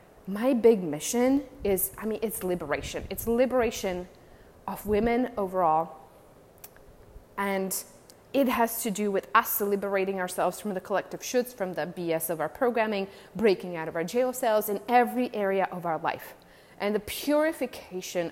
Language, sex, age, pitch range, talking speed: English, female, 20-39, 170-210 Hz, 155 wpm